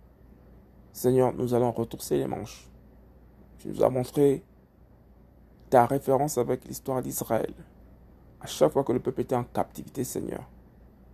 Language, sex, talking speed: French, male, 135 wpm